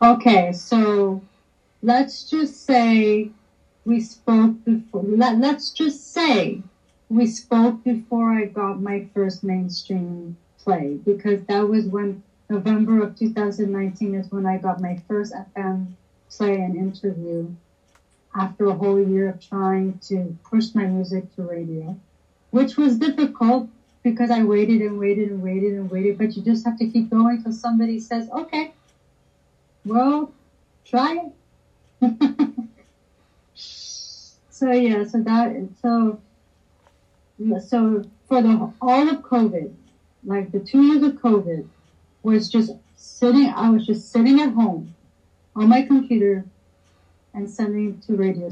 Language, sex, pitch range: English, female, 190-235 Hz